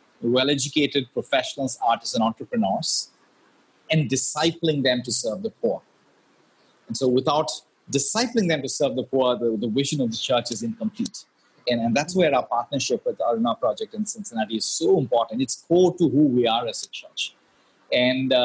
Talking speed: 170 wpm